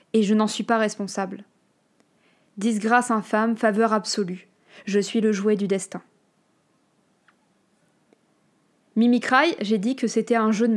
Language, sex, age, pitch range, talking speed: French, female, 20-39, 205-230 Hz, 150 wpm